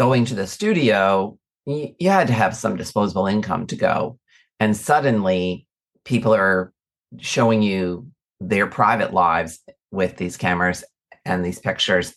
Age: 40-59